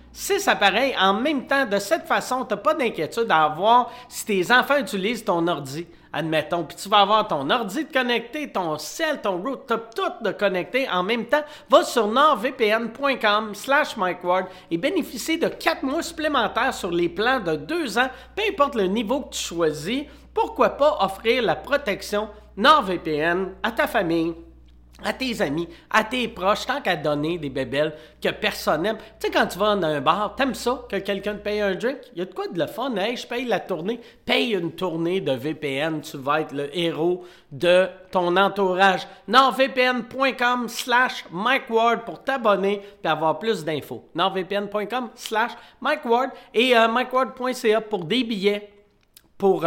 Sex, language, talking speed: male, French, 180 wpm